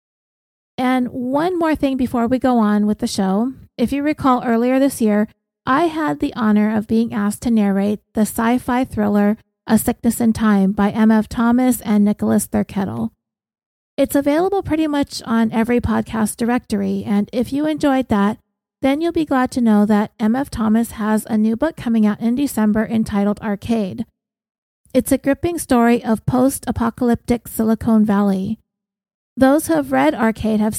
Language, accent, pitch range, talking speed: English, American, 210-255 Hz, 165 wpm